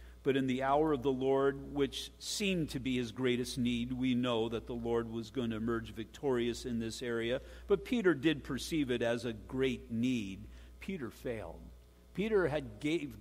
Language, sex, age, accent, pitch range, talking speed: English, male, 50-69, American, 120-160 Hz, 185 wpm